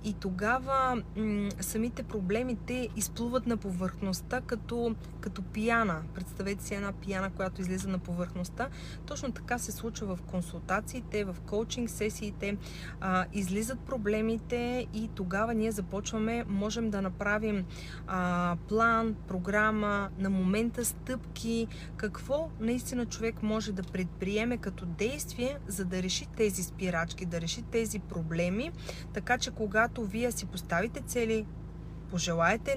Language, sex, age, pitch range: Bulgarian, female, 30-49, 185-225 Hz